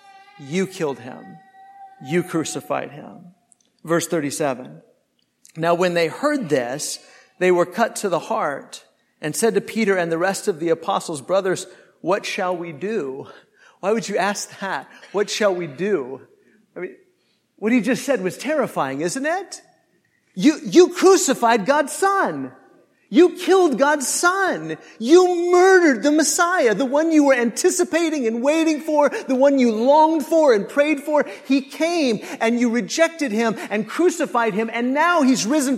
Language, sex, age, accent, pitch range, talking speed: English, male, 50-69, American, 195-300 Hz, 160 wpm